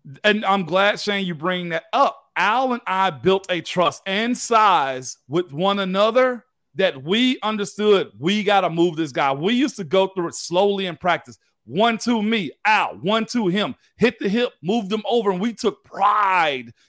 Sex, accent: male, American